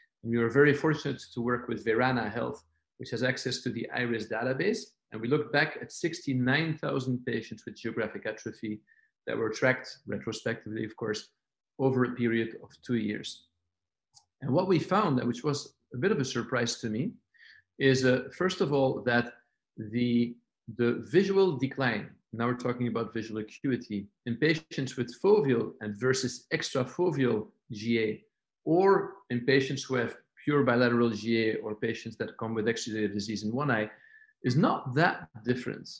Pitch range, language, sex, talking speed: 115-135 Hz, English, male, 165 wpm